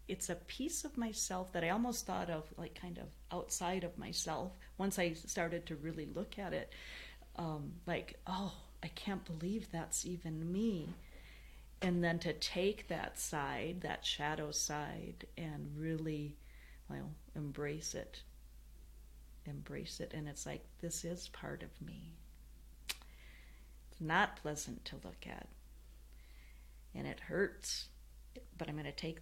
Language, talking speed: English, 145 wpm